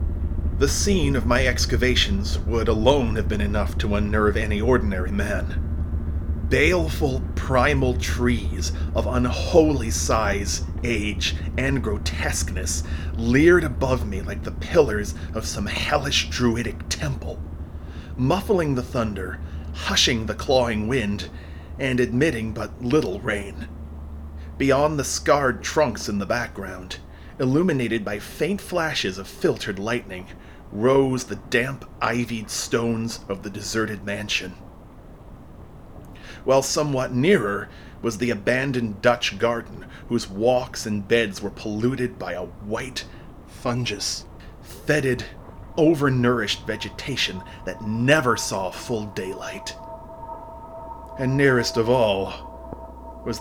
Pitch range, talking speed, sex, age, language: 80-120 Hz, 115 wpm, male, 30-49, English